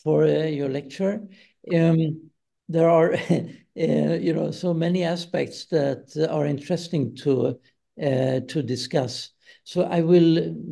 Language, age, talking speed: Swedish, 60-79, 130 wpm